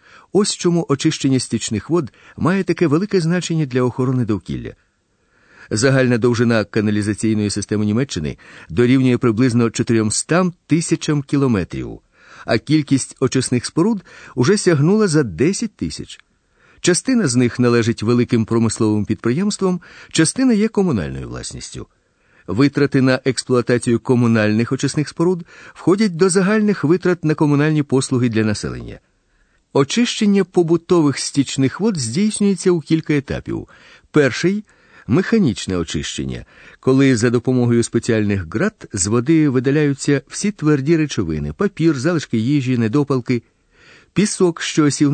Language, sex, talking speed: Ukrainian, male, 115 wpm